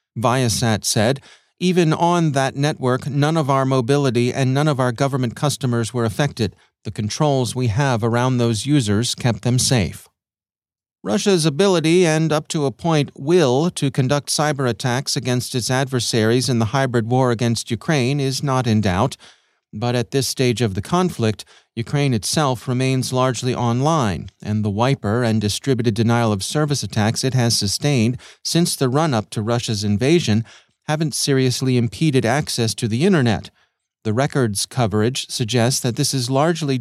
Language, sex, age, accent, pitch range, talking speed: English, male, 40-59, American, 115-140 Hz, 155 wpm